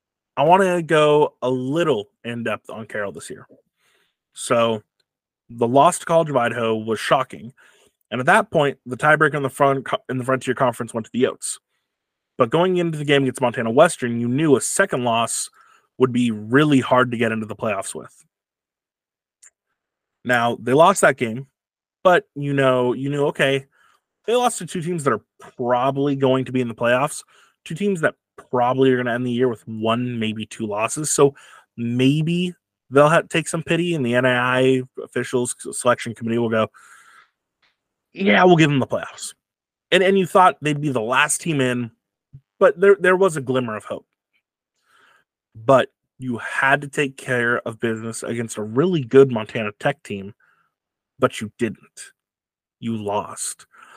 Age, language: 20-39, English